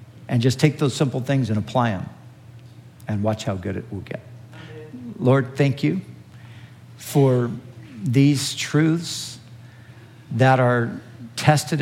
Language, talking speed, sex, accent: English, 125 wpm, male, American